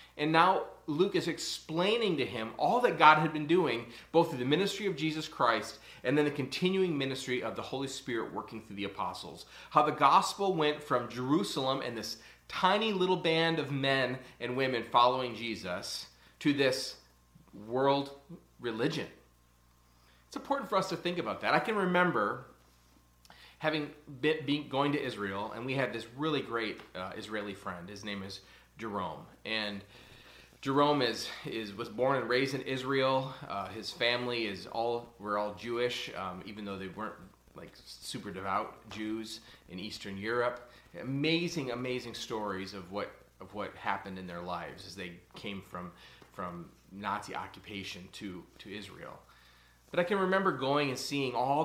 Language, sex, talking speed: English, male, 165 wpm